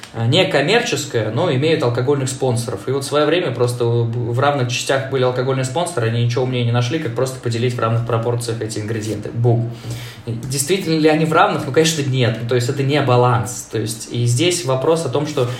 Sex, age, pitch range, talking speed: male, 20-39, 120-145 Hz, 205 wpm